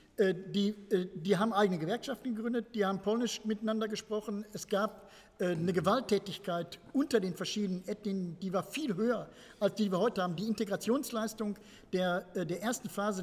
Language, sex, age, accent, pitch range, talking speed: German, male, 50-69, German, 185-220 Hz, 160 wpm